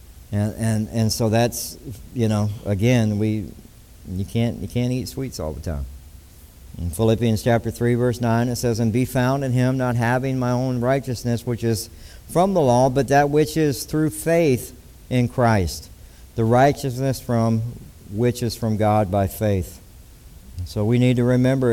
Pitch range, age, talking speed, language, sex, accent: 110-155 Hz, 60-79, 175 wpm, English, male, American